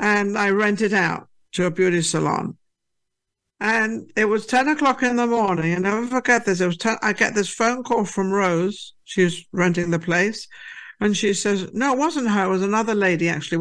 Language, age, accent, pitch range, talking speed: English, 60-79, British, 200-250 Hz, 205 wpm